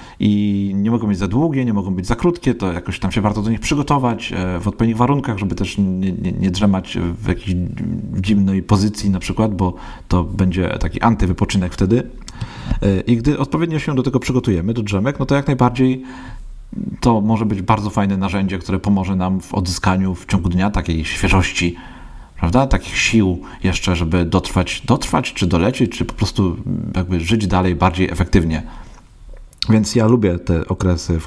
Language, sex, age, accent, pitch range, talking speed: Polish, male, 40-59, native, 90-115 Hz, 175 wpm